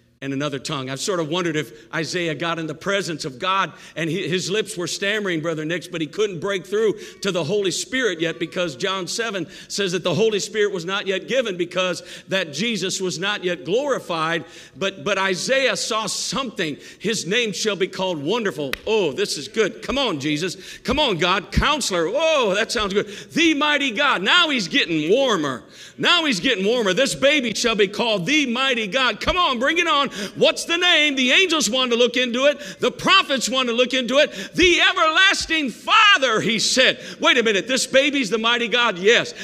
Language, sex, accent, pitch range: English, male, American, 175-270 Hz